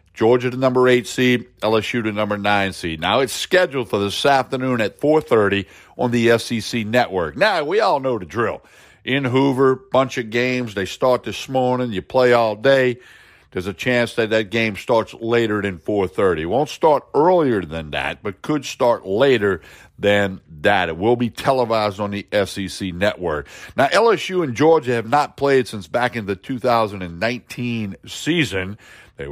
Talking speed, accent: 175 wpm, American